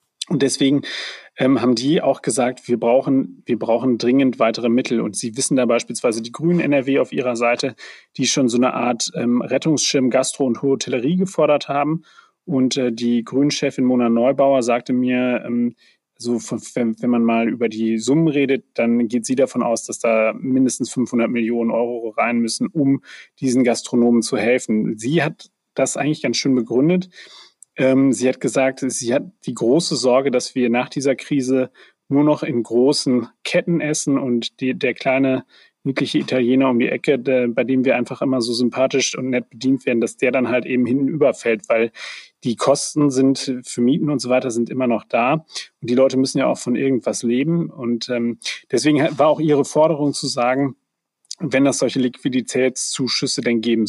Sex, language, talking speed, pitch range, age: male, German, 180 wpm, 120-140 Hz, 30-49